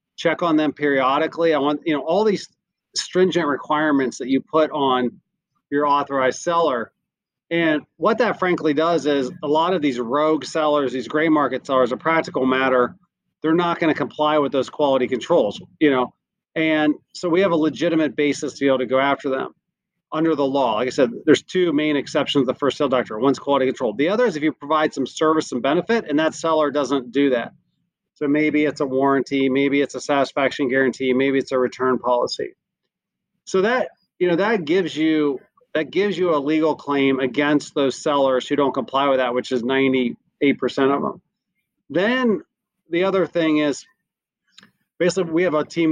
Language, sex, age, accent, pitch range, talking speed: English, male, 40-59, American, 135-160 Hz, 195 wpm